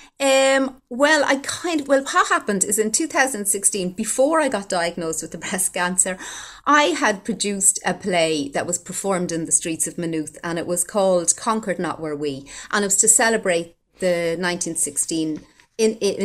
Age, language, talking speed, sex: 30-49, English, 185 wpm, female